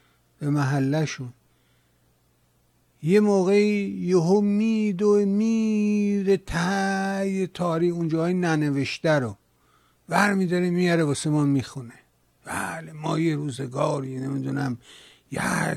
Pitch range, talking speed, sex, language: 135-195 Hz, 100 wpm, male, Persian